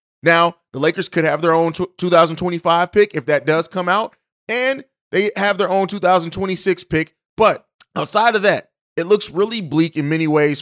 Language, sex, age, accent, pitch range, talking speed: English, male, 30-49, American, 155-195 Hz, 180 wpm